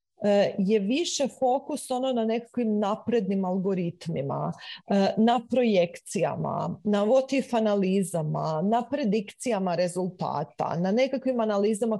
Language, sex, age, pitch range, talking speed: Croatian, female, 40-59, 195-245 Hz, 95 wpm